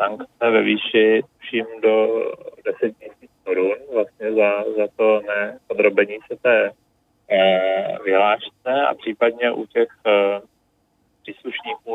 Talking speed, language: 115 wpm, Czech